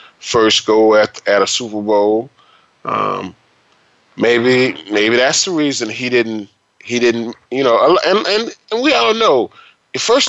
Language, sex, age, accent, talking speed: English, male, 30-49, American, 155 wpm